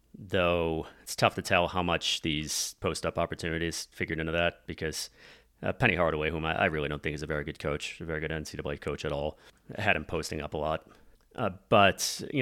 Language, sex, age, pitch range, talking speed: English, male, 30-49, 80-95 Hz, 215 wpm